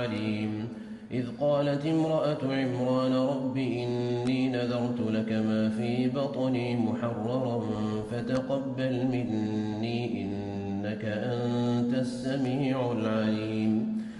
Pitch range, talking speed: 120-135 Hz, 75 wpm